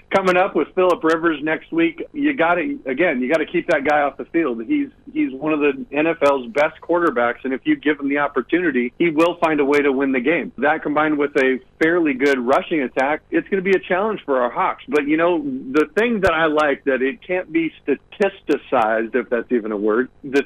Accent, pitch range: American, 135-175 Hz